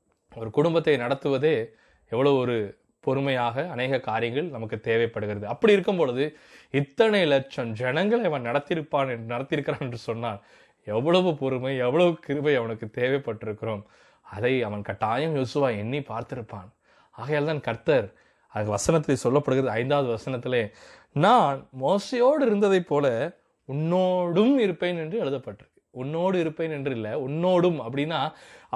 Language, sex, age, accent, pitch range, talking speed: Tamil, male, 20-39, native, 125-195 Hz, 110 wpm